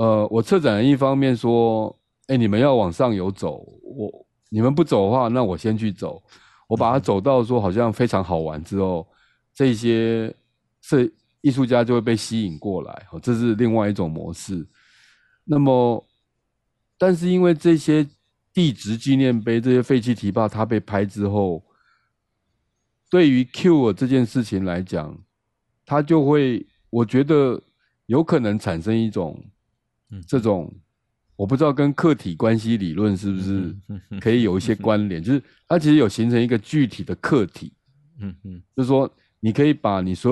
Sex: male